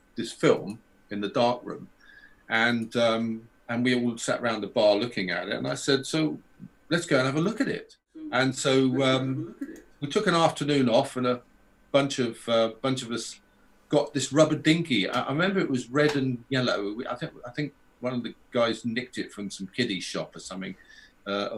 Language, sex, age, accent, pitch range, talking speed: English, male, 50-69, British, 120-155 Hz, 210 wpm